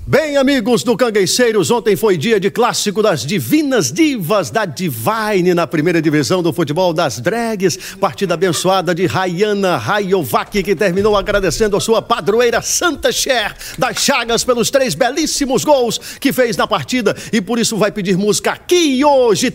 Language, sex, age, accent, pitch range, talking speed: Portuguese, male, 50-69, Brazilian, 190-250 Hz, 160 wpm